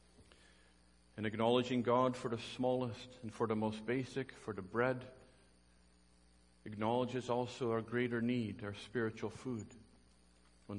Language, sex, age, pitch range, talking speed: English, male, 50-69, 100-125 Hz, 130 wpm